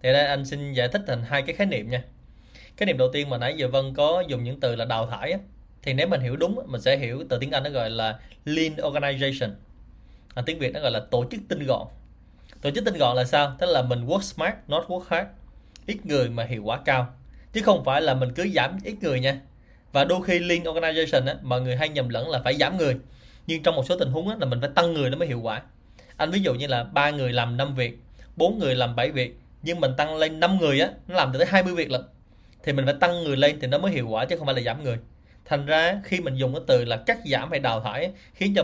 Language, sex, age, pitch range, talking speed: Vietnamese, male, 20-39, 125-160 Hz, 275 wpm